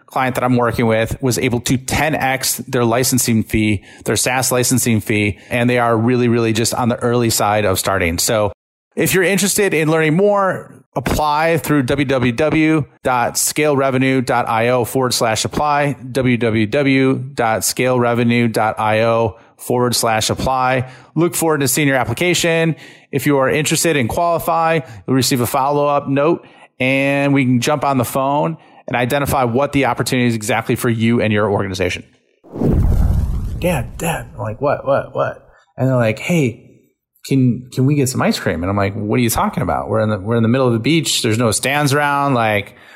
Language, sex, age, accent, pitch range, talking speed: English, male, 30-49, American, 110-140 Hz, 170 wpm